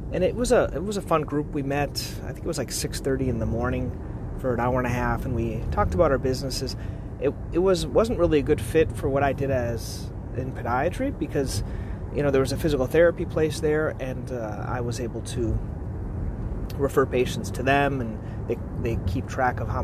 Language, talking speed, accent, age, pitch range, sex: English, 225 wpm, American, 30-49, 110-140 Hz, male